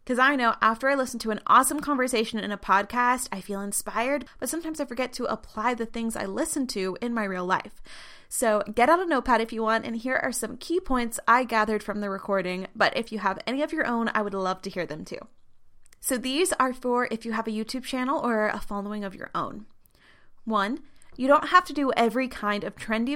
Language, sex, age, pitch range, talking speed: English, female, 20-39, 205-255 Hz, 235 wpm